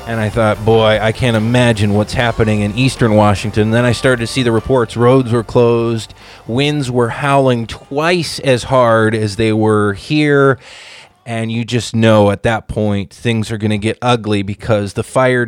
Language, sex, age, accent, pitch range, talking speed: English, male, 20-39, American, 110-135 Hz, 185 wpm